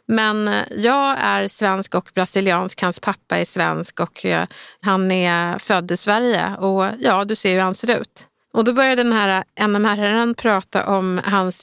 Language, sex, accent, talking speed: Swedish, female, native, 180 wpm